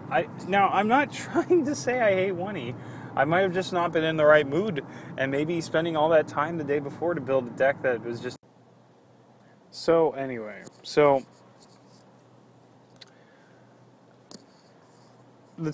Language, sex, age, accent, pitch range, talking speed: English, male, 20-39, American, 115-150 Hz, 155 wpm